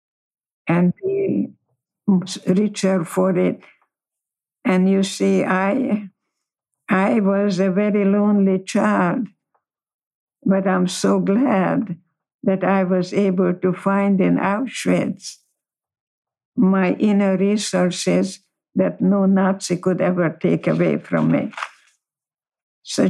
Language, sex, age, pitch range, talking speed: English, female, 60-79, 185-205 Hz, 105 wpm